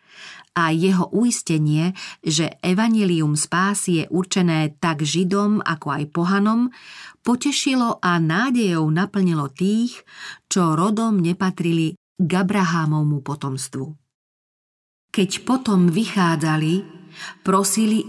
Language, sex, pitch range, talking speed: Slovak, female, 160-200 Hz, 85 wpm